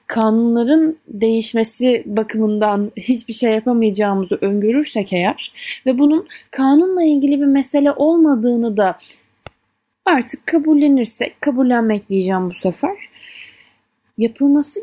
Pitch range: 215-305 Hz